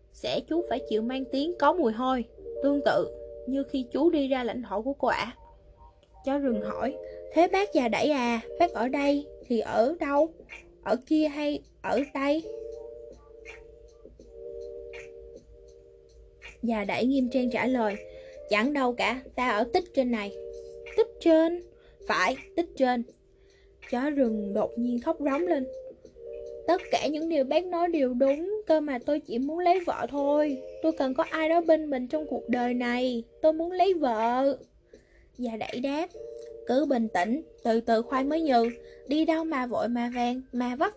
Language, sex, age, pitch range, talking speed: Vietnamese, female, 10-29, 235-325 Hz, 170 wpm